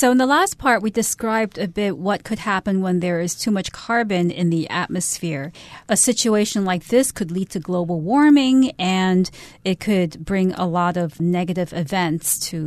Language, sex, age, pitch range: Chinese, female, 40-59, 180-230 Hz